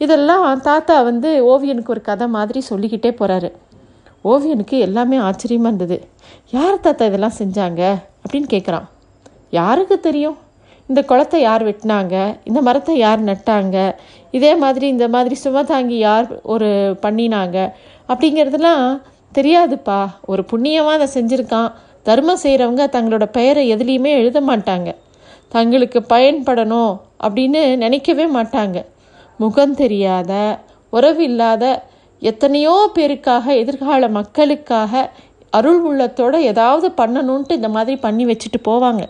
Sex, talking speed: female, 110 wpm